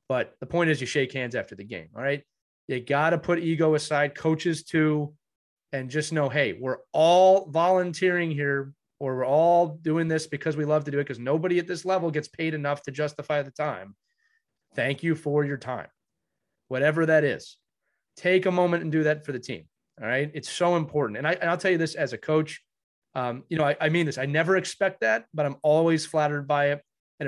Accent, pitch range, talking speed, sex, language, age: American, 135-170 Hz, 220 wpm, male, English, 30-49